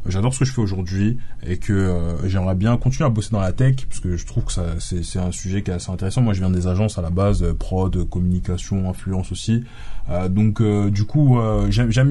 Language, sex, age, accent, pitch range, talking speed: French, male, 20-39, French, 95-120 Hz, 250 wpm